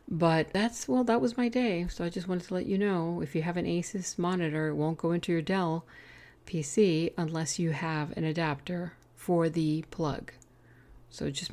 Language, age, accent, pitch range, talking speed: English, 50-69, American, 145-185 Hz, 200 wpm